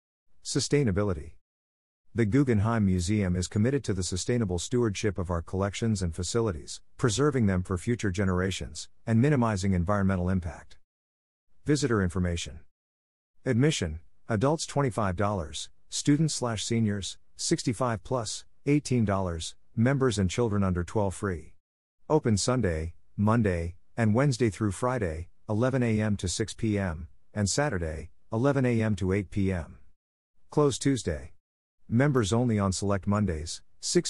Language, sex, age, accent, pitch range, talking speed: English, male, 50-69, American, 85-115 Hz, 120 wpm